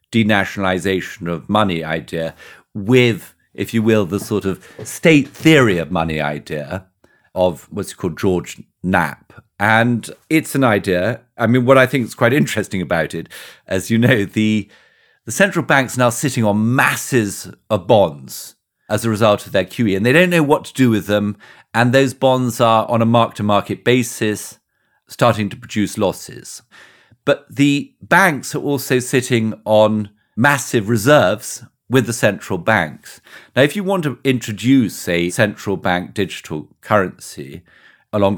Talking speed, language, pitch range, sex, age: 160 wpm, English, 90-125 Hz, male, 50-69